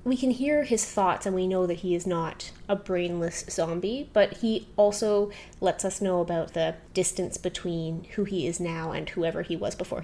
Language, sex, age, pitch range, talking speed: English, female, 20-39, 180-215 Hz, 205 wpm